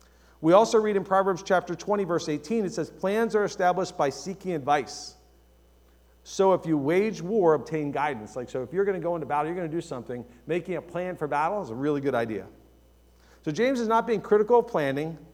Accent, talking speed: American, 220 wpm